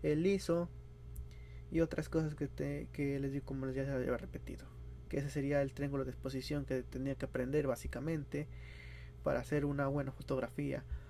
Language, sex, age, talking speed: Spanish, male, 20-39, 170 wpm